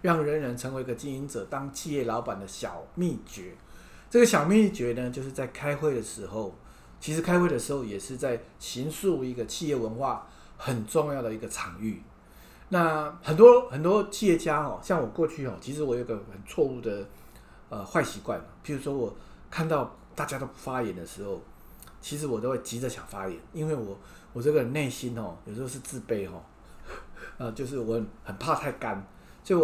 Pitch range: 115-155 Hz